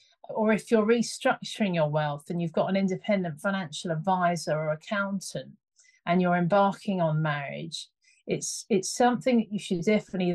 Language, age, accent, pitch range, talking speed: English, 40-59, British, 165-205 Hz, 155 wpm